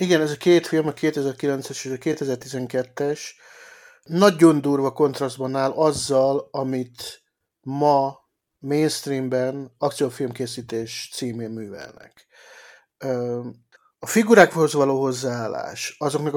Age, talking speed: 50-69, 95 wpm